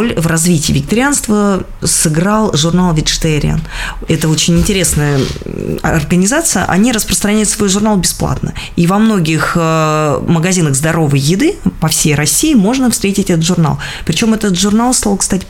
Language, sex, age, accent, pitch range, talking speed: Russian, female, 20-39, native, 155-190 Hz, 130 wpm